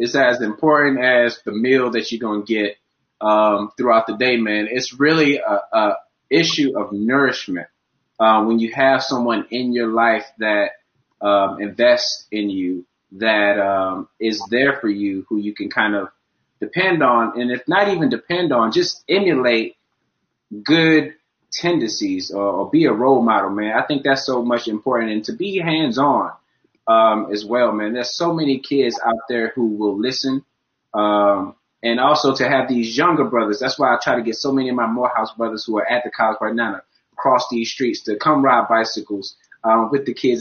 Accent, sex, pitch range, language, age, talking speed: American, male, 105-135 Hz, English, 20-39, 190 wpm